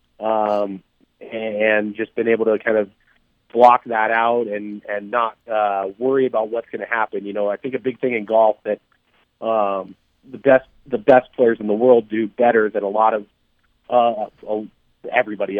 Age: 30-49